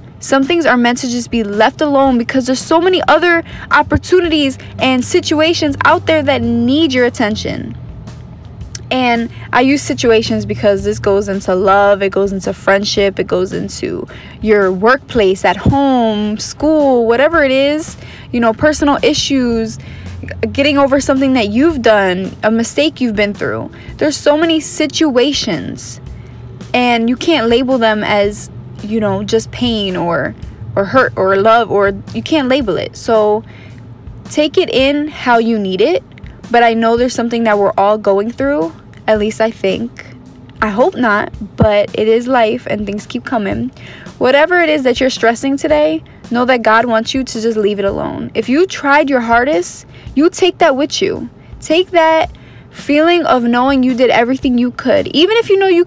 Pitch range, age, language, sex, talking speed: 215-290 Hz, 20-39, English, female, 175 wpm